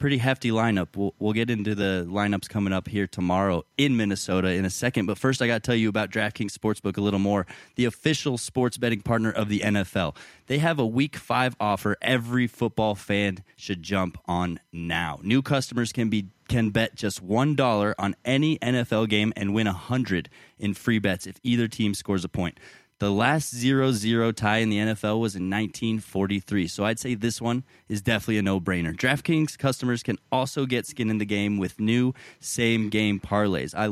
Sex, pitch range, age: male, 100-120 Hz, 20-39